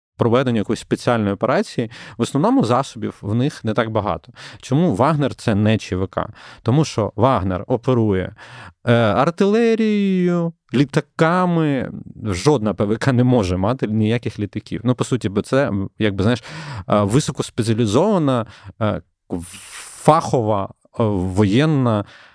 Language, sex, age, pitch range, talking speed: Ukrainian, male, 30-49, 100-130 Hz, 105 wpm